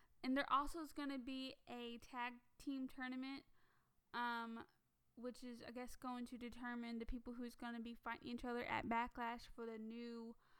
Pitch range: 240-275 Hz